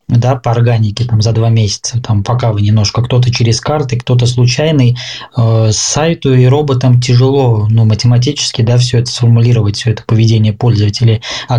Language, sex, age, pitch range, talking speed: Russian, male, 20-39, 115-130 Hz, 160 wpm